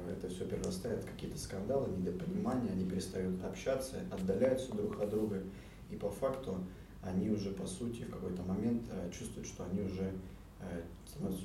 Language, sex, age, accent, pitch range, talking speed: Russian, male, 30-49, native, 95-105 Hz, 150 wpm